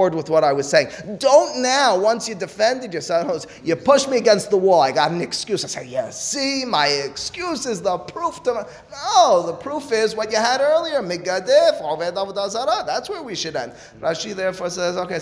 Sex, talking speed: male, 195 wpm